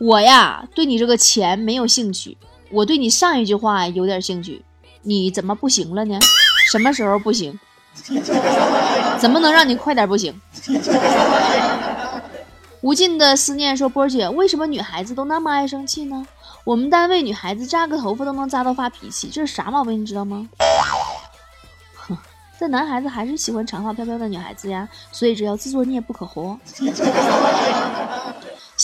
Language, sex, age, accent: Chinese, female, 20-39, native